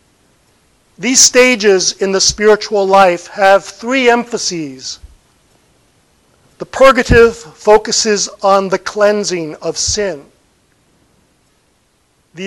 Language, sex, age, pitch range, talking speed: English, male, 50-69, 175-220 Hz, 85 wpm